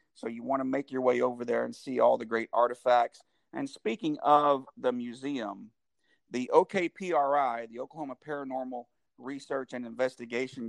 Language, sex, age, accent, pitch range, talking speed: English, male, 50-69, American, 120-140 Hz, 155 wpm